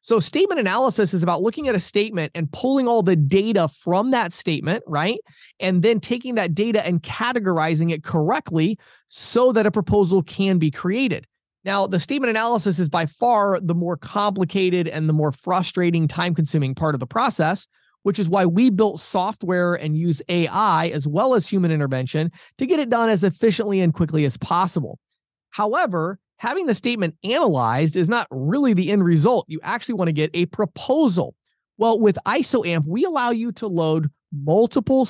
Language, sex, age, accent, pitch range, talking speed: English, male, 30-49, American, 160-220 Hz, 180 wpm